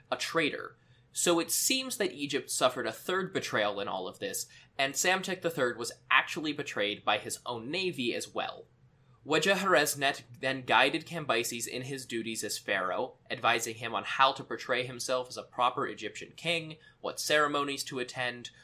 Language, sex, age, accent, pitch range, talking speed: English, male, 20-39, American, 120-155 Hz, 165 wpm